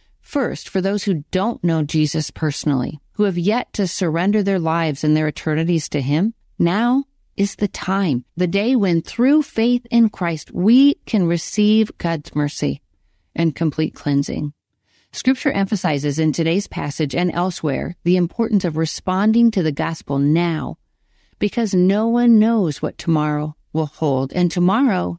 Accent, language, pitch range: American, English, 155-215 Hz